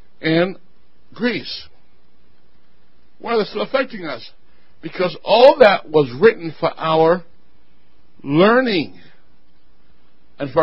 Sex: male